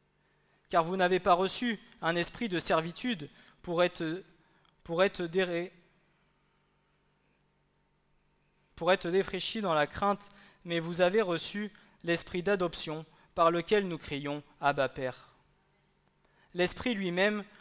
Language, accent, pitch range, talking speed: French, French, 140-180 Hz, 115 wpm